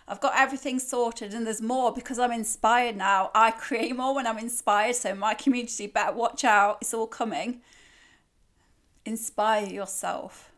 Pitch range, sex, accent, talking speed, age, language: 210-245 Hz, female, British, 160 wpm, 30-49, English